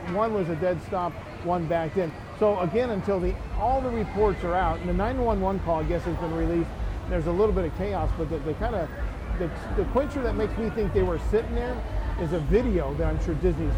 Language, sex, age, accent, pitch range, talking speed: English, male, 50-69, American, 135-195 Hz, 240 wpm